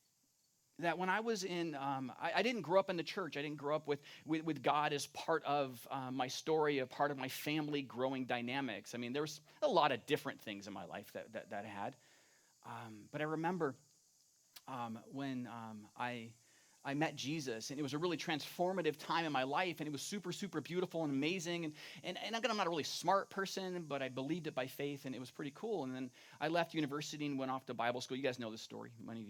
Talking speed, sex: 245 wpm, male